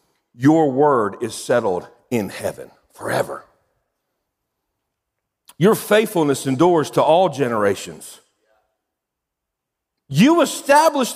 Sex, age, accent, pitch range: male, 50-69, American, 165-255 Hz